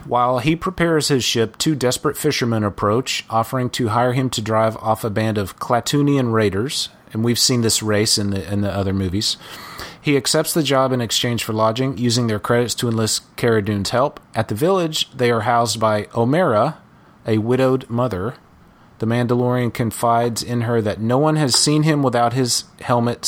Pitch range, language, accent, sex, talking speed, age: 110-125 Hz, English, American, male, 185 wpm, 30-49